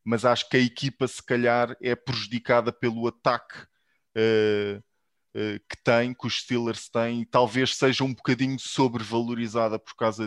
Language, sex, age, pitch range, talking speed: Portuguese, male, 20-39, 115-135 Hz, 160 wpm